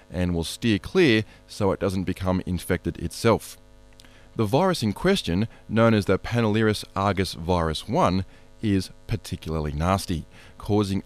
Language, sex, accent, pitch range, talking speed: English, male, Australian, 90-120 Hz, 135 wpm